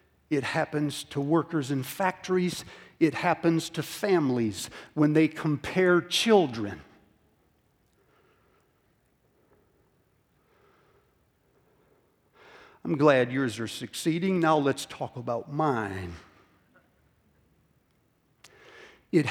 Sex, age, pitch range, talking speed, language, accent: male, 60-79, 130-185 Hz, 80 wpm, English, American